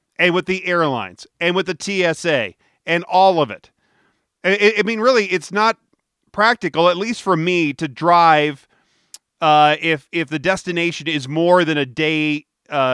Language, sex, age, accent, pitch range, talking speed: English, male, 40-59, American, 150-185 Hz, 155 wpm